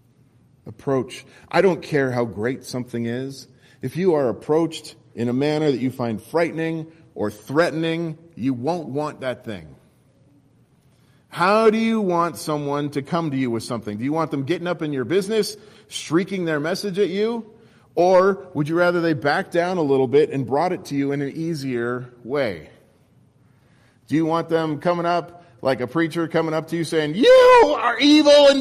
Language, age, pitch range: English, 40-59, 135-205 Hz